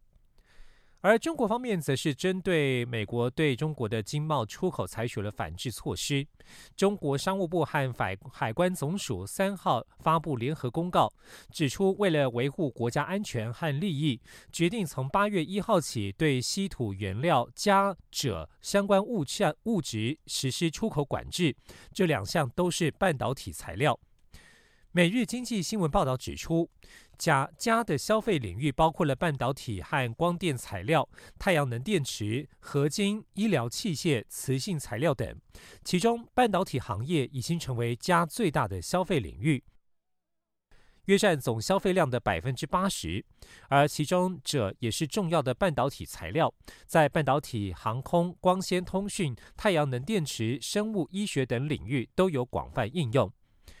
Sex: male